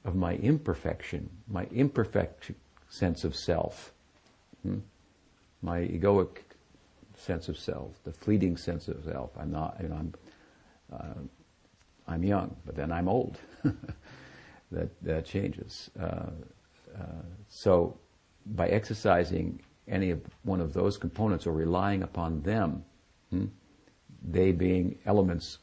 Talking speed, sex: 115 wpm, male